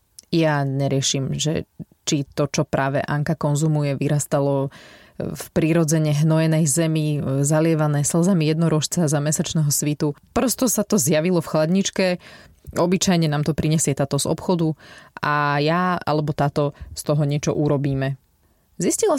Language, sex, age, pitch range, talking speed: Slovak, female, 20-39, 145-175 Hz, 130 wpm